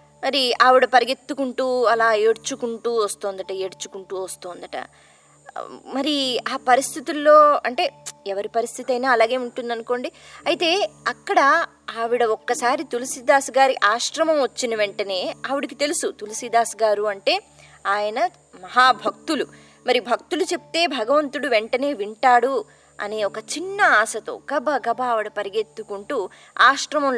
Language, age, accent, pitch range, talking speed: Telugu, 20-39, native, 215-295 Hz, 110 wpm